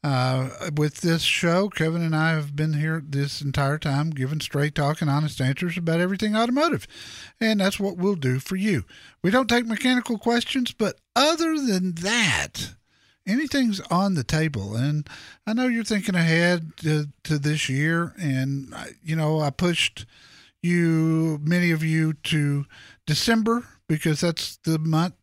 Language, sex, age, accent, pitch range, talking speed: English, male, 50-69, American, 150-205 Hz, 160 wpm